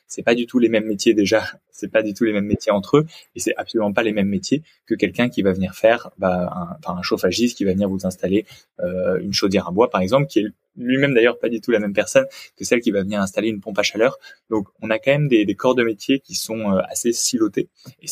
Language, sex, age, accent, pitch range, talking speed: French, male, 20-39, French, 100-125 Hz, 275 wpm